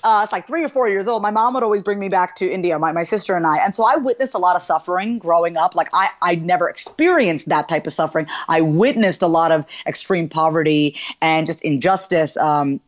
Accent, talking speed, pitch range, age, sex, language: American, 240 wpm, 180-235 Hz, 30-49, female, English